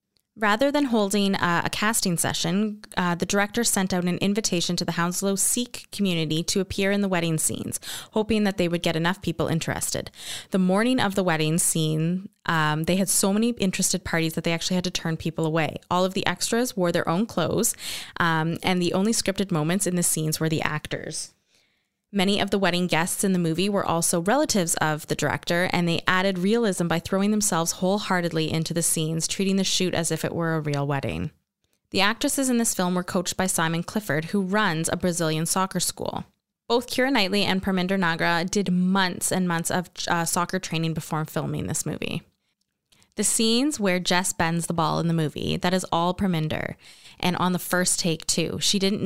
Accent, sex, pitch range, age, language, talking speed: American, female, 165-195 Hz, 20-39, English, 200 wpm